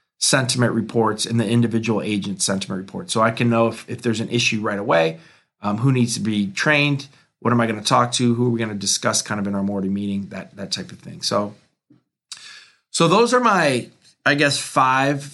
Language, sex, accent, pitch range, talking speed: English, male, American, 115-130 Hz, 225 wpm